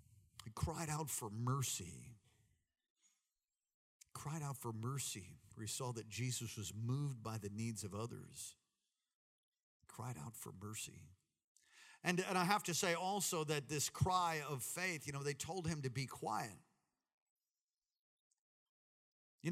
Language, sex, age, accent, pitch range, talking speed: English, male, 50-69, American, 115-135 Hz, 140 wpm